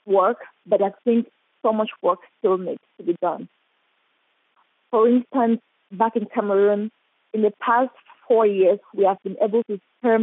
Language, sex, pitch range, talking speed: English, female, 200-240 Hz, 165 wpm